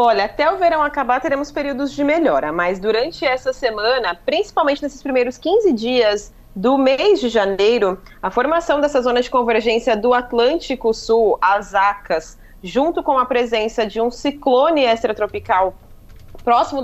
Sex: female